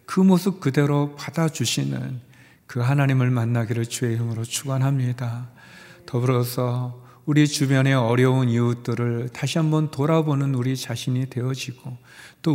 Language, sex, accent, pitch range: Korean, male, native, 120-140 Hz